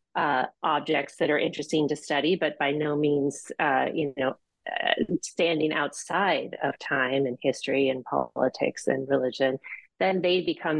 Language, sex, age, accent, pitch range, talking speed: English, female, 30-49, American, 145-180 Hz, 155 wpm